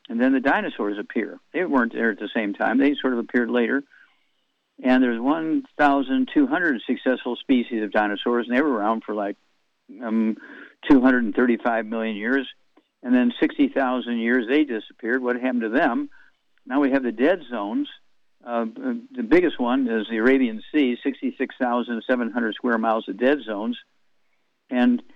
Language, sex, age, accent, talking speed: English, male, 60-79, American, 155 wpm